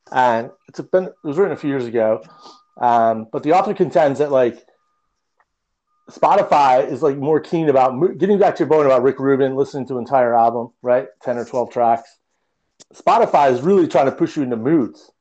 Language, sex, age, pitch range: English, male, 30-49, 120-150 Hz